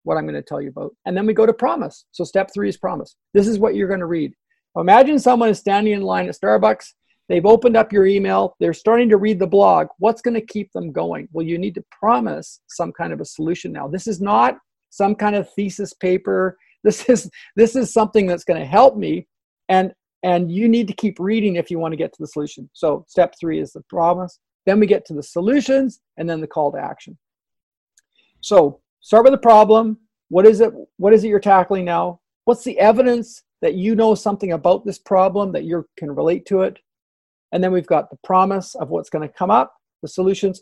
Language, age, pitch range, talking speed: English, 40-59, 170-220 Hz, 230 wpm